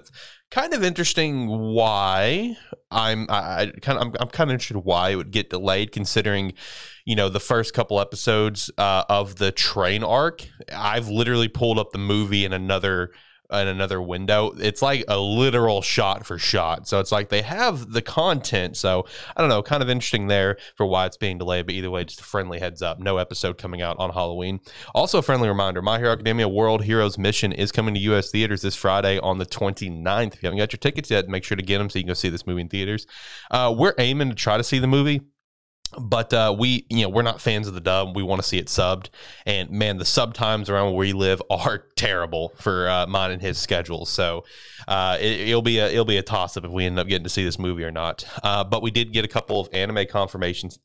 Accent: American